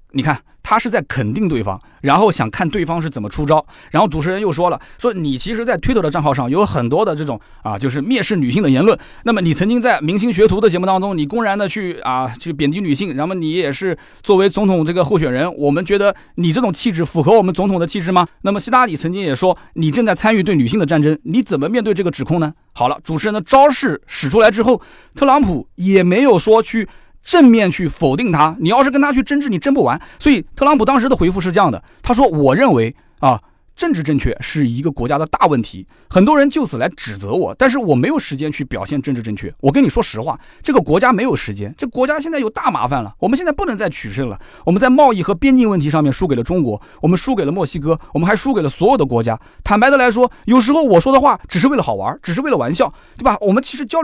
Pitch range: 150-245 Hz